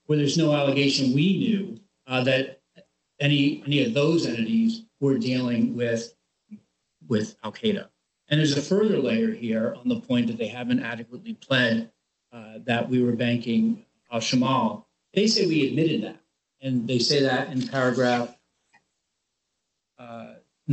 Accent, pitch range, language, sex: American, 125-165 Hz, English, male